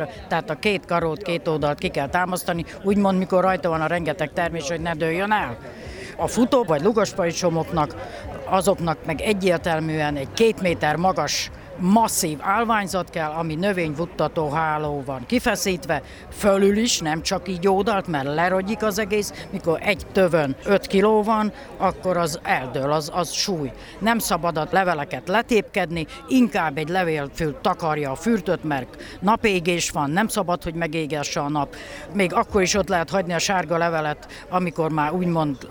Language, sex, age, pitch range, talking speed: Hungarian, female, 60-79, 155-195 Hz, 155 wpm